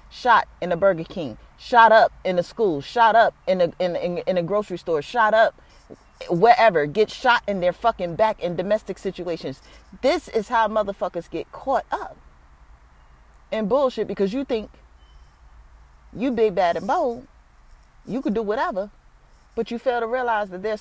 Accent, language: American, English